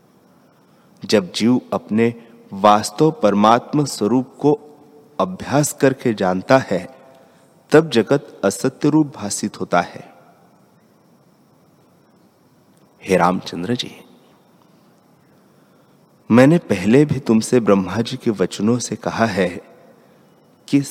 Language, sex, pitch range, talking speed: Hindi, male, 100-125 Hz, 90 wpm